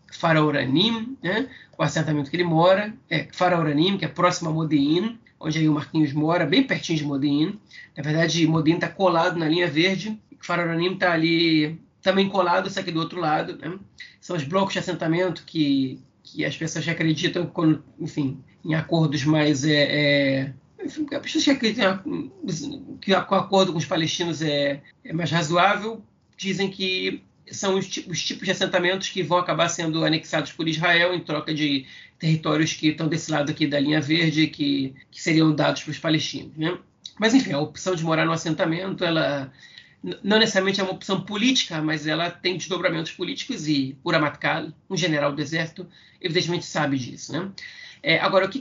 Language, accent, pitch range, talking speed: Portuguese, Brazilian, 155-185 Hz, 175 wpm